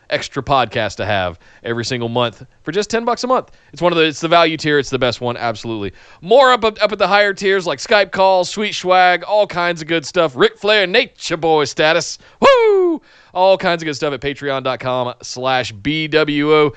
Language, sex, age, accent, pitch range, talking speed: English, male, 30-49, American, 130-195 Hz, 205 wpm